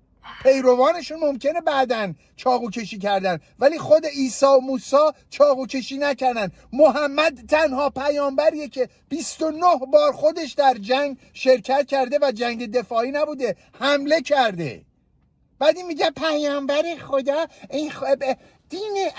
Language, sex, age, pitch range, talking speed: Persian, male, 50-69, 255-310 Hz, 115 wpm